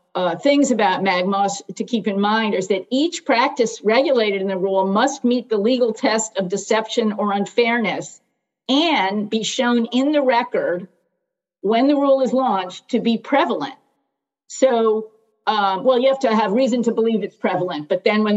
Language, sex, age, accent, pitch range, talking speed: English, female, 50-69, American, 195-235 Hz, 175 wpm